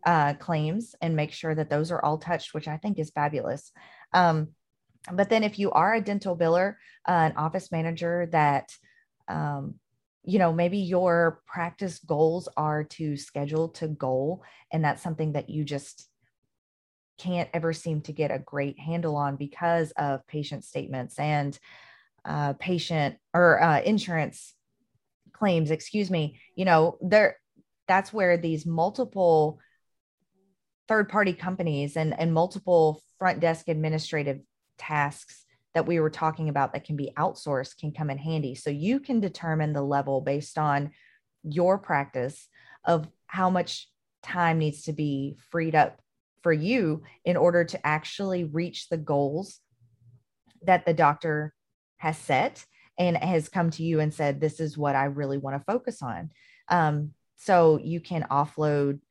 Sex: female